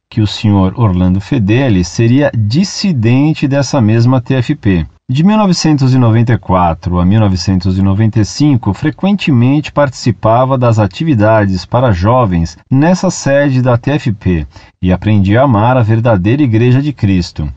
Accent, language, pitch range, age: Brazilian, Portuguese, 100-155 Hz, 40-59